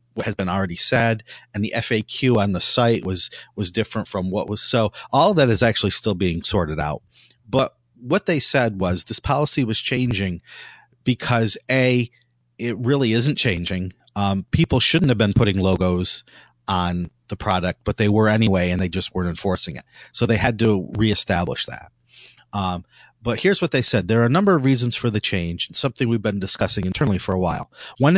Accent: American